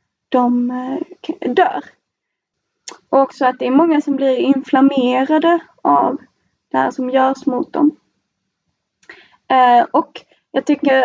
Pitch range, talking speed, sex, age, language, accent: 250-280 Hz, 115 wpm, female, 20-39, Swedish, native